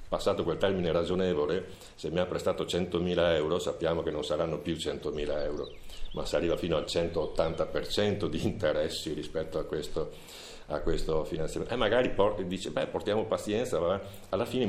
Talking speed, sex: 170 wpm, male